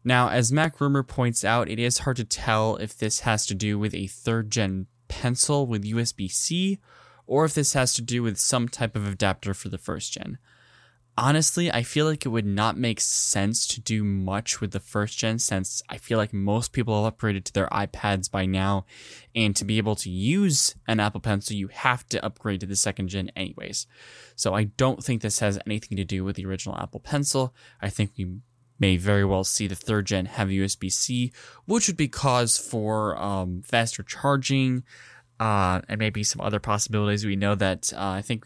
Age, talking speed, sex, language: 10-29, 205 wpm, male, English